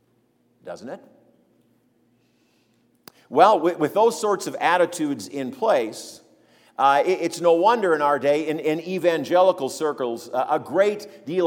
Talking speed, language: 125 wpm, English